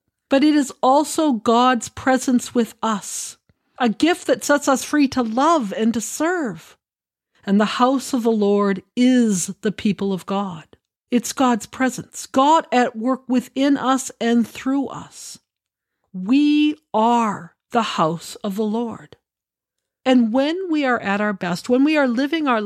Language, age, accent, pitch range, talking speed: English, 50-69, American, 200-265 Hz, 160 wpm